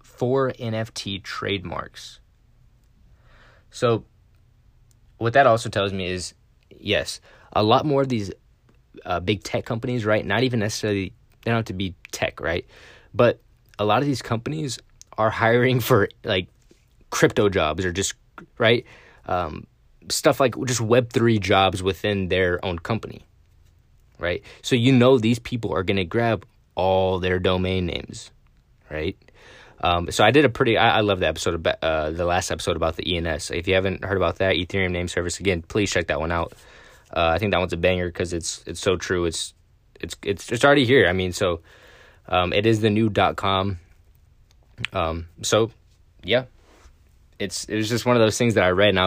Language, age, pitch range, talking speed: English, 20-39, 90-115 Hz, 180 wpm